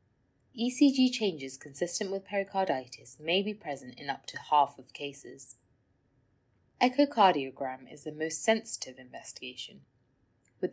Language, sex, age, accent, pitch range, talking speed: English, female, 20-39, British, 135-200 Hz, 115 wpm